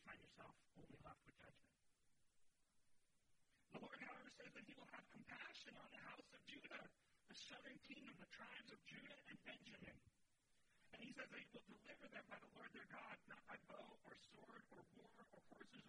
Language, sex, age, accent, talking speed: English, male, 40-59, American, 195 wpm